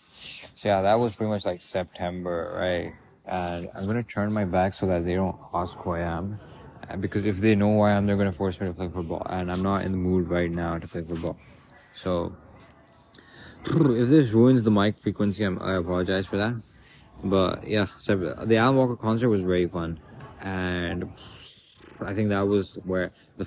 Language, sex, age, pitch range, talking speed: English, male, 20-39, 90-110 Hz, 205 wpm